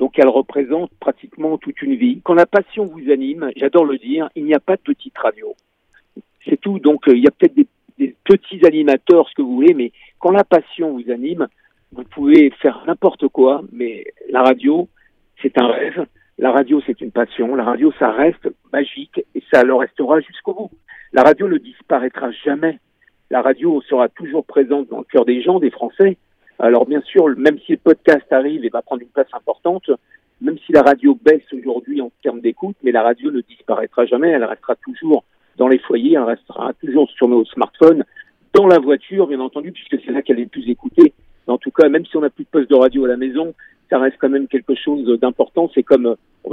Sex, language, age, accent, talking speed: male, Italian, 50-69, French, 215 wpm